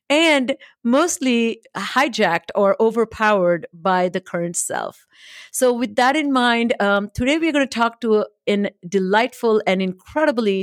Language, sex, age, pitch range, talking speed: English, female, 50-69, 195-255 Hz, 150 wpm